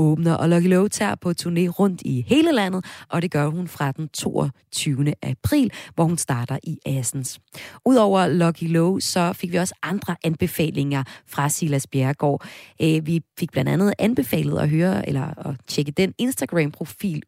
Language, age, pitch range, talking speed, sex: Danish, 30-49, 140-180 Hz, 160 wpm, female